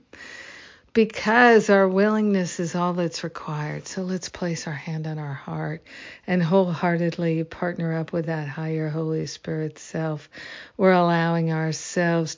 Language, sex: English, female